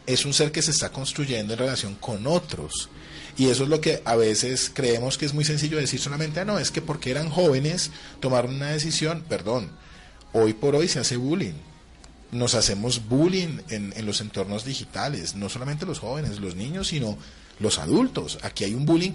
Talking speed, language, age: 195 wpm, Spanish, 30-49